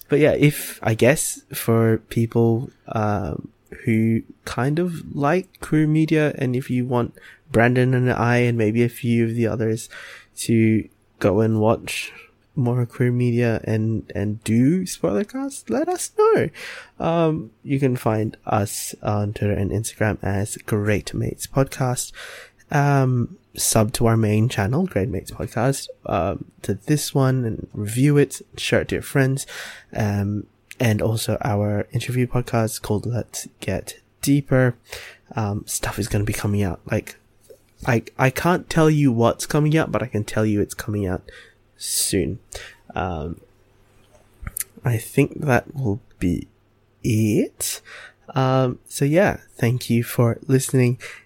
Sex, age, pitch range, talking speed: male, 20-39, 105-135 Hz, 150 wpm